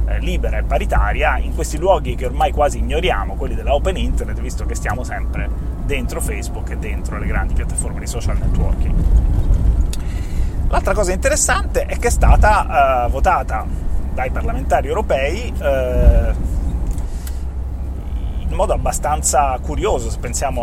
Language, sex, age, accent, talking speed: Italian, male, 30-49, native, 135 wpm